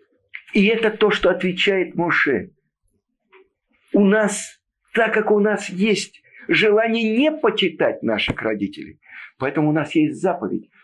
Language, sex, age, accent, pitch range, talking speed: Russian, male, 50-69, native, 165-230 Hz, 125 wpm